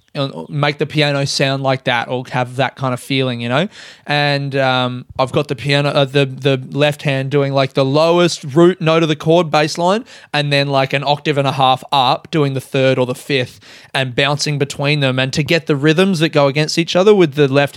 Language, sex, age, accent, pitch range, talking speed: English, male, 20-39, Australian, 130-155 Hz, 230 wpm